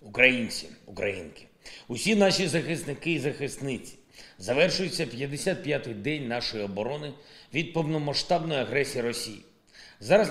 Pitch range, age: 135-175 Hz, 40-59